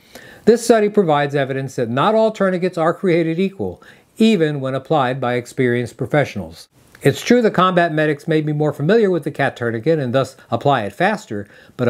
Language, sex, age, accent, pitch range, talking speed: English, male, 50-69, American, 130-190 Hz, 180 wpm